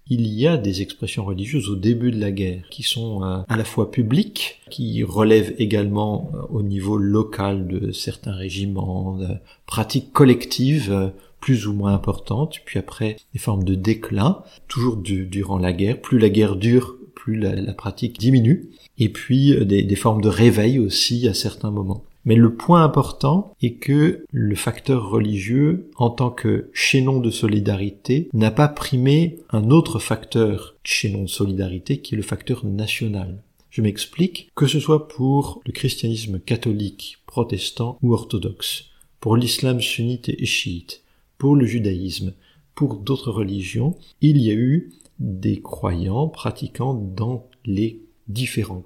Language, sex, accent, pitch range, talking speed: French, male, French, 100-130 Hz, 150 wpm